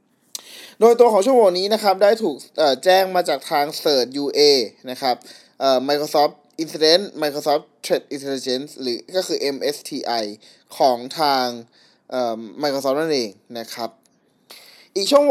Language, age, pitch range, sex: Thai, 20-39, 140-185 Hz, male